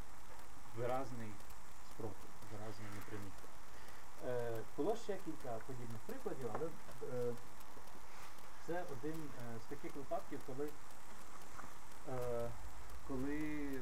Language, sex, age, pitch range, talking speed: Ukrainian, male, 30-49, 105-135 Hz, 75 wpm